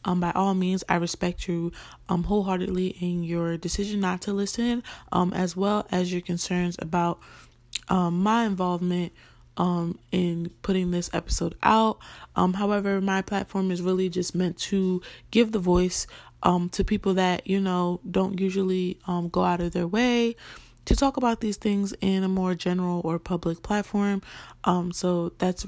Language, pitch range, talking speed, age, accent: English, 175-200 Hz, 170 wpm, 20-39, American